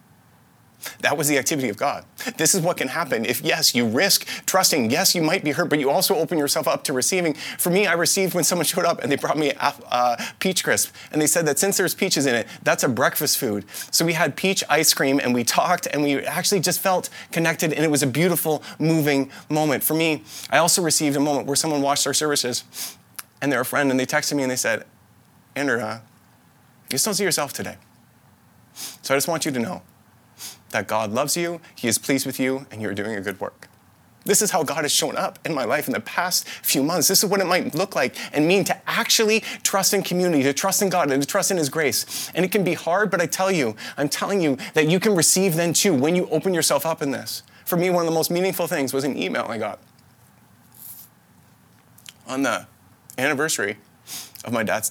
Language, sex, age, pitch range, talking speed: English, male, 20-39, 140-185 Hz, 235 wpm